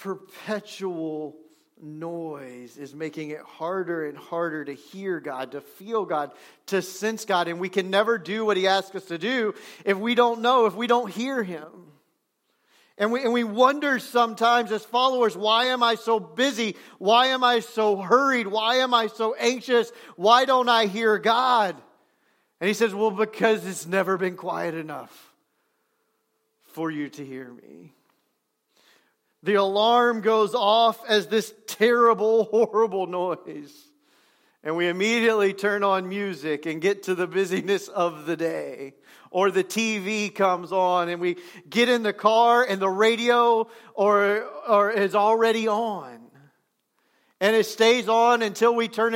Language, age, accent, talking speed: English, 40-59, American, 155 wpm